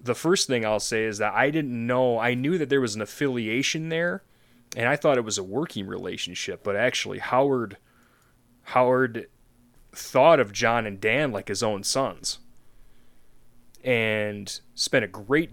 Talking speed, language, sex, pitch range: 165 wpm, English, male, 105-130 Hz